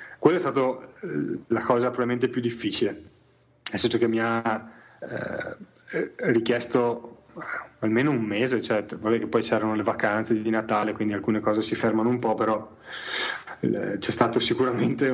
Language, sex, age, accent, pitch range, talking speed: Italian, male, 30-49, native, 115-130 Hz, 145 wpm